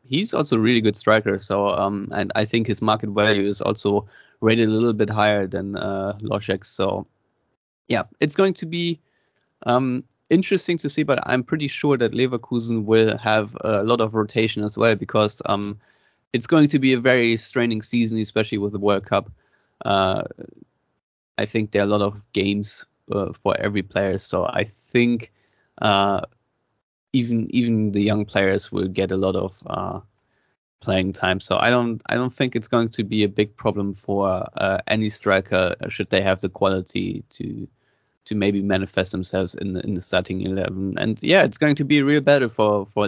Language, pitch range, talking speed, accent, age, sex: Czech, 100-120 Hz, 190 wpm, German, 20-39, male